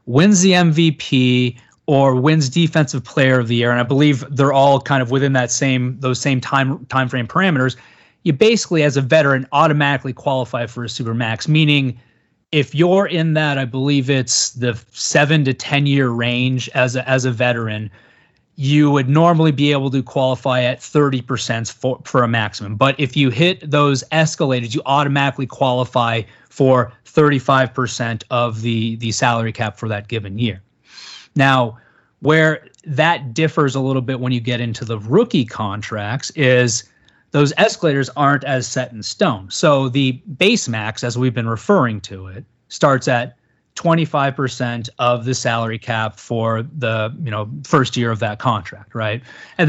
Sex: male